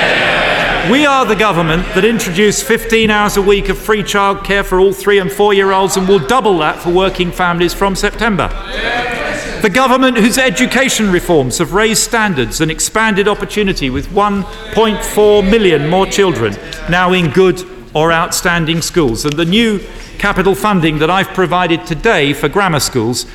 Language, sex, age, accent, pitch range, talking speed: English, male, 50-69, British, 150-200 Hz, 155 wpm